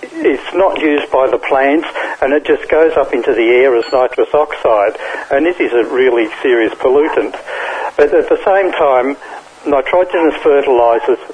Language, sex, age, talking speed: English, male, 60-79, 165 wpm